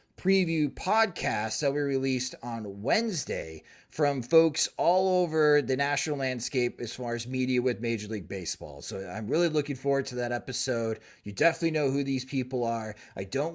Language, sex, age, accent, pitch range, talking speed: English, male, 30-49, American, 125-150 Hz, 175 wpm